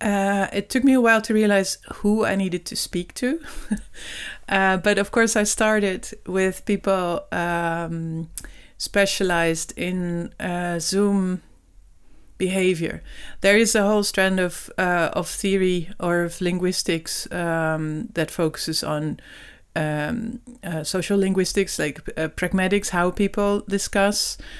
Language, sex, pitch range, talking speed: French, female, 170-200 Hz, 130 wpm